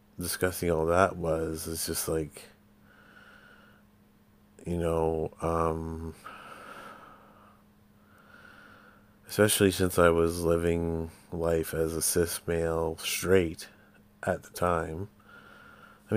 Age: 30-49